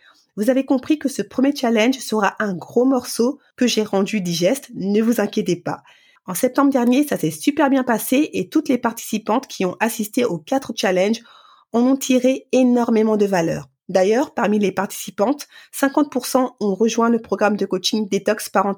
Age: 30-49